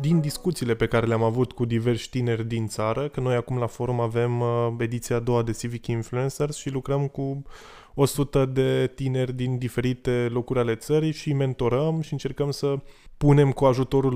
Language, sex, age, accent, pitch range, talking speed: Romanian, male, 20-39, native, 115-145 Hz, 180 wpm